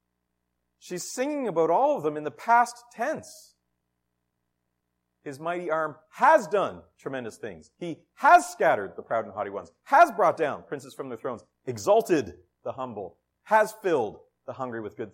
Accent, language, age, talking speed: American, English, 40-59, 165 wpm